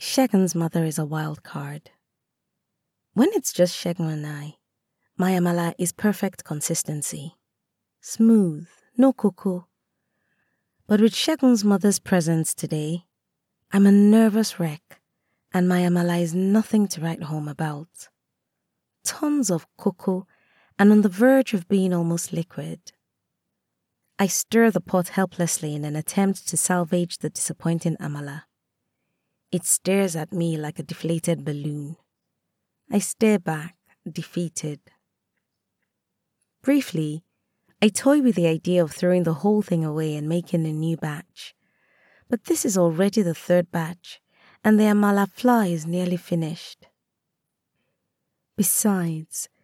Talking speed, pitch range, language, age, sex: 130 wpm, 165-205 Hz, English, 20-39, female